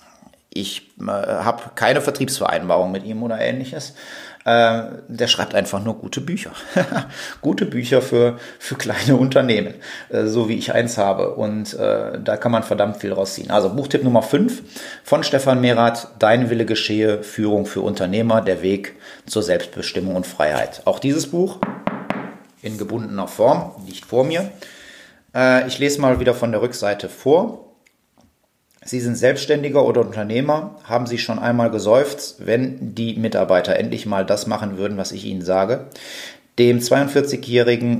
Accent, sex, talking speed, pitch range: German, male, 155 wpm, 100-125 Hz